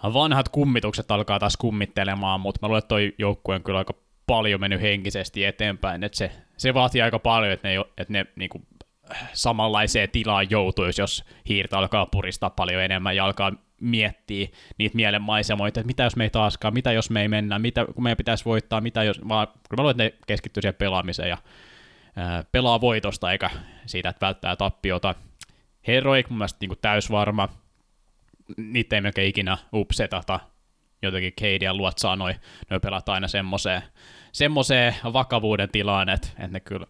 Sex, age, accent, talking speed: male, 20-39, native, 165 wpm